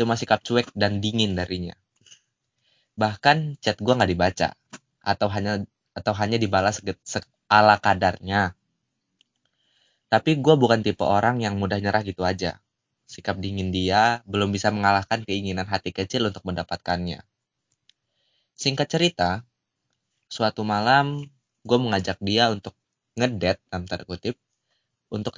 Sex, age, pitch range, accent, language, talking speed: male, 20-39, 95-115 Hz, native, Indonesian, 120 wpm